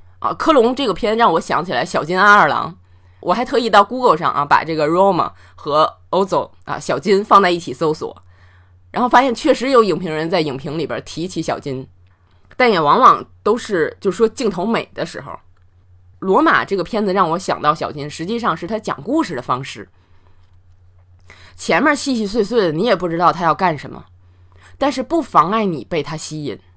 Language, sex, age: Chinese, female, 20-39